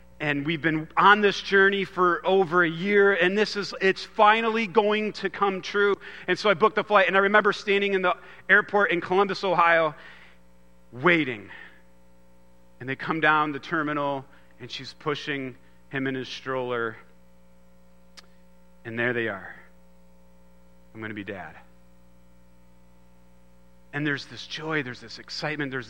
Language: English